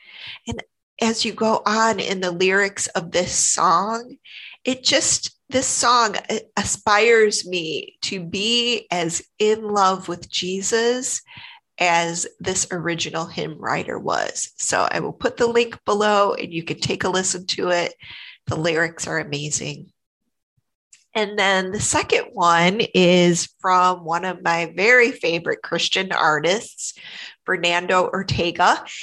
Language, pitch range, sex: English, 175-210 Hz, female